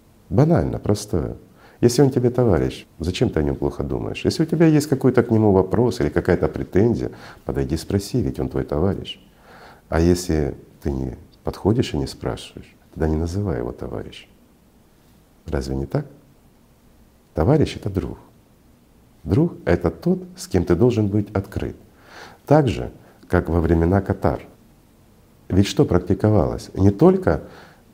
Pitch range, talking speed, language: 80-130 Hz, 150 wpm, Russian